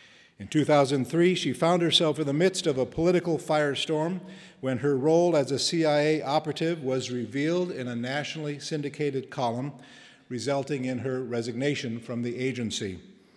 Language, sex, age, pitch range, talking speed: English, male, 50-69, 125-155 Hz, 150 wpm